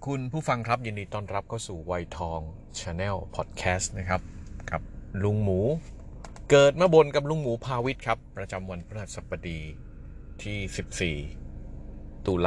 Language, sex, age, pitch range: Thai, male, 30-49, 85-105 Hz